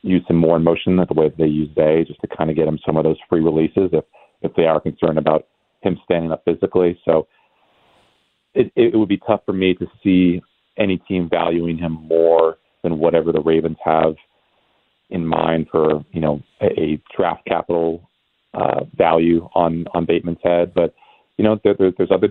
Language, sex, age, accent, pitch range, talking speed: English, male, 40-59, American, 80-90 Hz, 200 wpm